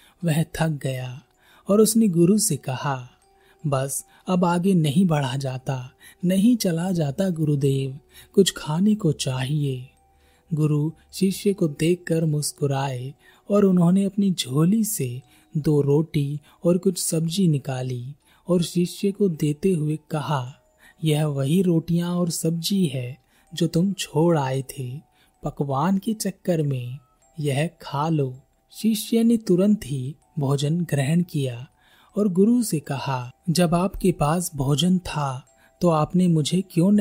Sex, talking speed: male, 135 wpm